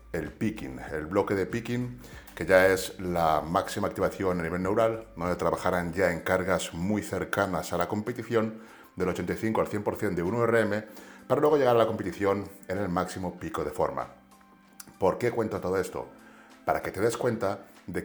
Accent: Spanish